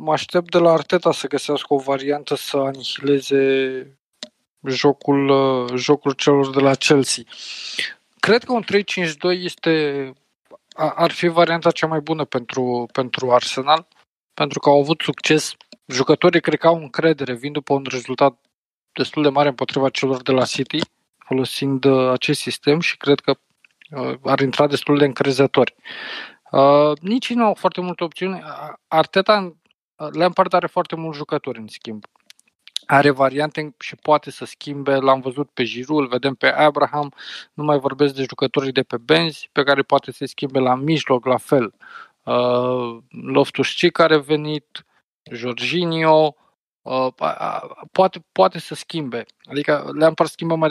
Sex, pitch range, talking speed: male, 135-165 Hz, 145 wpm